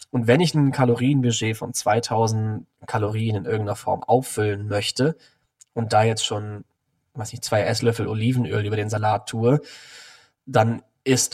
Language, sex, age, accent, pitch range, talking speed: German, male, 20-39, German, 105-125 Hz, 150 wpm